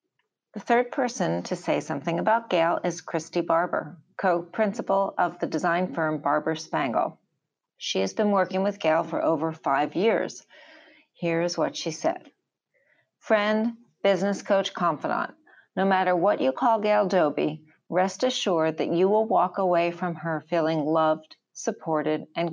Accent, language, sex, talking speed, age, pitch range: American, English, female, 150 wpm, 40-59, 160-210 Hz